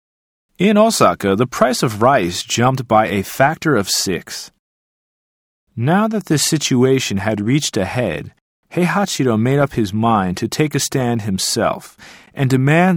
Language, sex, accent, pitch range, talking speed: English, male, American, 105-160 Hz, 150 wpm